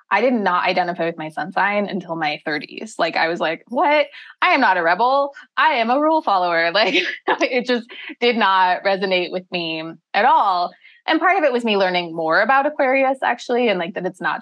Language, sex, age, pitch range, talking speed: English, female, 20-39, 170-230 Hz, 215 wpm